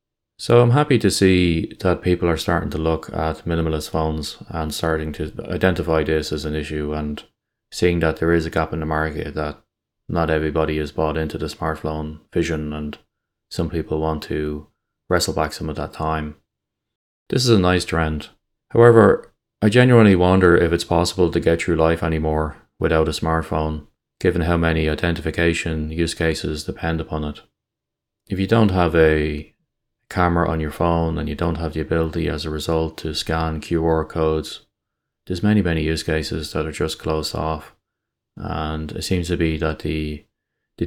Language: English